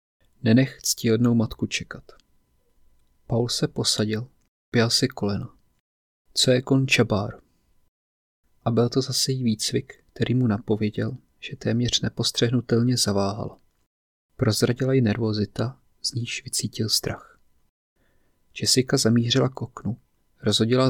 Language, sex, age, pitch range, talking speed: Czech, male, 30-49, 105-125 Hz, 110 wpm